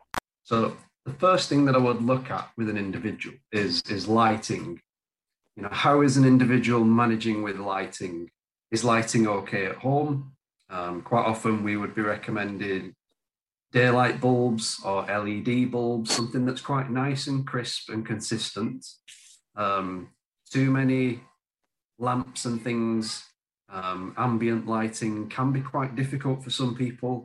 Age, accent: 30-49, British